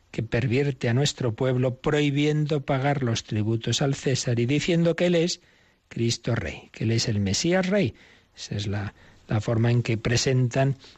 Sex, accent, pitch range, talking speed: male, Spanish, 110-140 Hz, 175 wpm